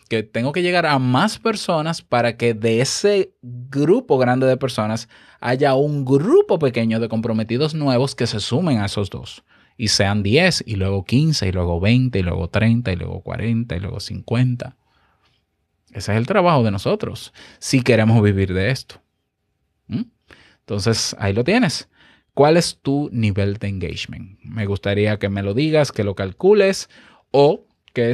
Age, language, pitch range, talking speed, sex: 20-39, Spanish, 105-130 Hz, 165 wpm, male